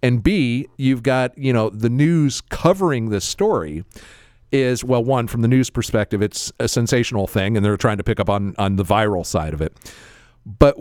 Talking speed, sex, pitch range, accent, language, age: 200 wpm, male, 105-140 Hz, American, English, 40-59